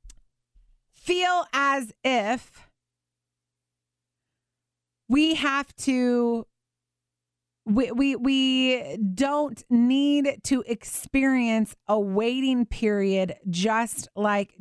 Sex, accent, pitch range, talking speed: female, American, 215-270 Hz, 75 wpm